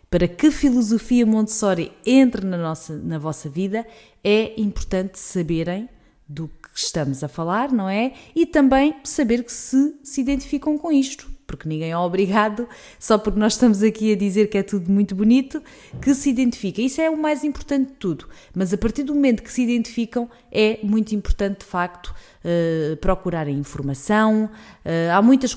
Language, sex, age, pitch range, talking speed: Portuguese, female, 20-39, 175-225 Hz, 165 wpm